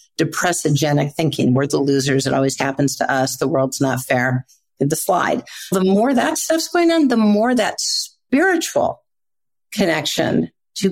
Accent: American